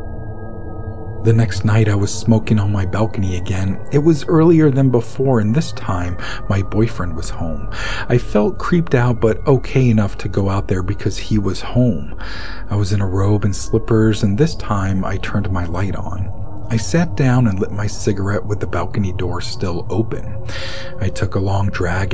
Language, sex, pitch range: English, male, 95-115 Hz